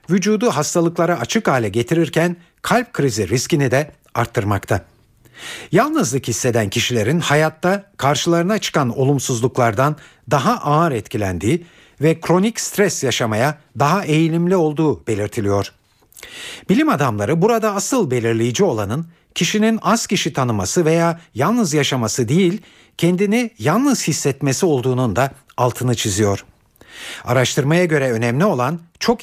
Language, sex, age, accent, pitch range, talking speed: Turkish, male, 60-79, native, 120-170 Hz, 110 wpm